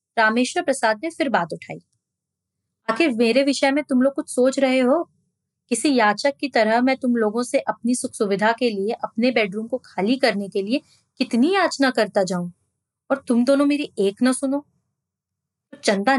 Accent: native